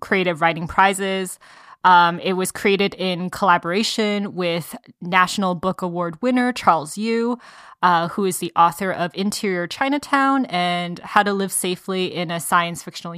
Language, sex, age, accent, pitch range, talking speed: English, female, 20-39, American, 175-205 Hz, 150 wpm